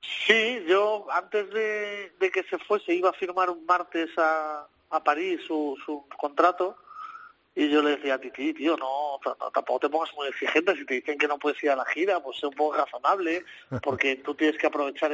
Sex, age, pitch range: male, 30-49, 135-165 Hz